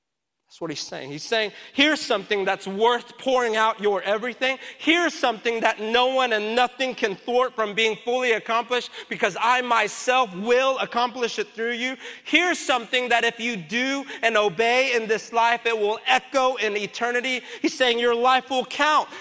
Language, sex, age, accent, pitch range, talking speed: English, male, 30-49, American, 195-255 Hz, 180 wpm